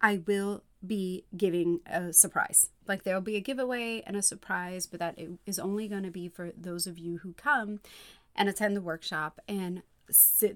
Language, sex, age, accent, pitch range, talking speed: English, female, 30-49, American, 175-220 Hz, 195 wpm